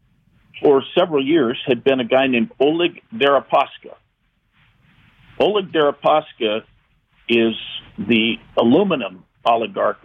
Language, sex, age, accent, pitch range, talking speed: English, male, 50-69, American, 115-150 Hz, 95 wpm